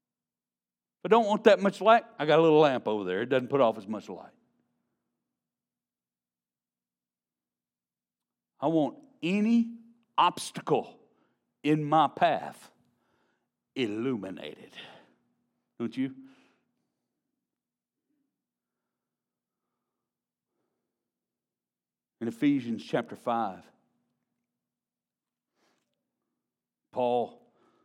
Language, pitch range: English, 105-180 Hz